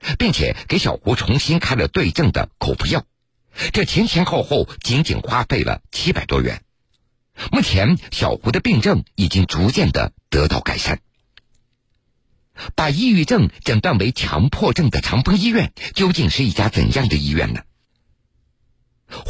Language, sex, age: Chinese, male, 50-69